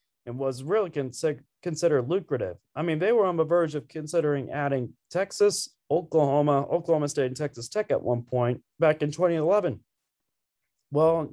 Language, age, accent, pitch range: English, 20-39, American, 120-155 Hz